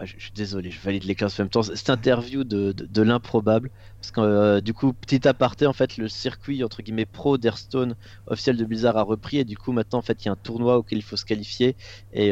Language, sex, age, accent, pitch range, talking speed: French, male, 30-49, French, 100-120 Hz, 250 wpm